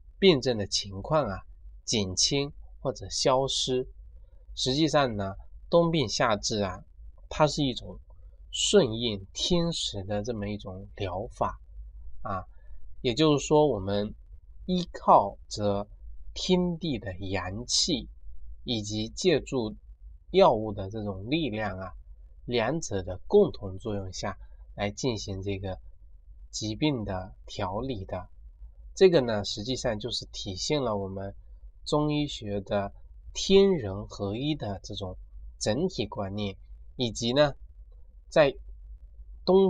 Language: Chinese